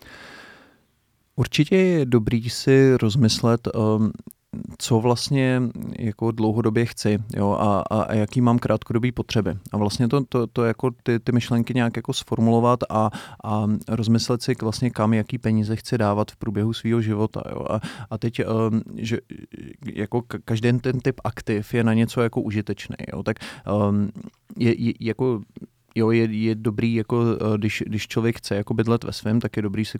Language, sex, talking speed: Slovak, male, 170 wpm